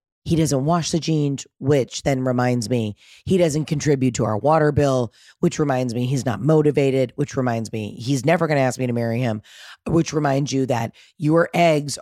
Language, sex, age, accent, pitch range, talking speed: English, female, 30-49, American, 130-180 Hz, 200 wpm